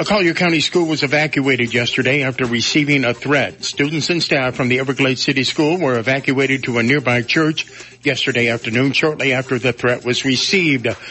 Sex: male